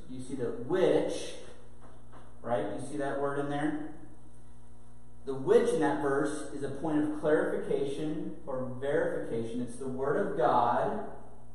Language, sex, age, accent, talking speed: English, male, 40-59, American, 145 wpm